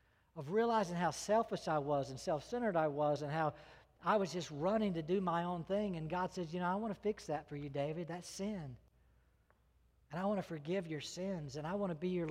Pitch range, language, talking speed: 155-215 Hz, English, 240 wpm